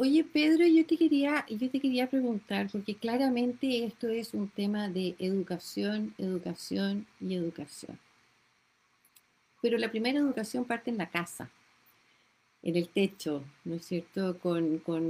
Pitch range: 185-275 Hz